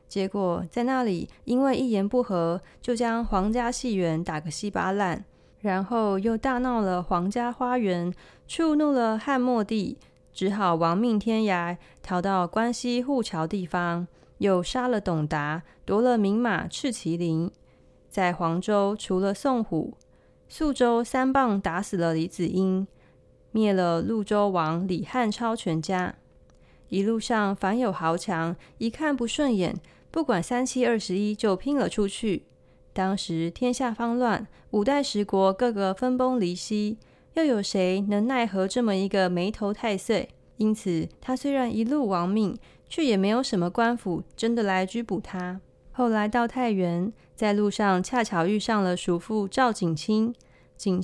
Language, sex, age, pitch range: Chinese, female, 20-39, 185-240 Hz